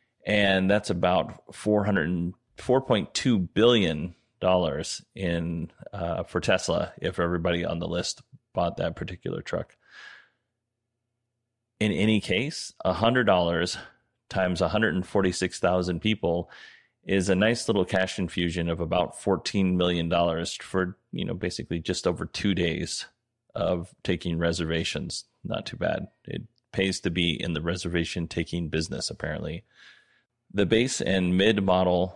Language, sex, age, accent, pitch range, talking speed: English, male, 30-49, American, 85-100 Hz, 140 wpm